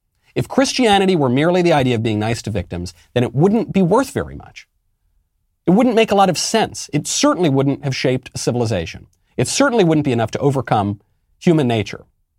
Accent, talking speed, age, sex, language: American, 200 wpm, 40-59, male, English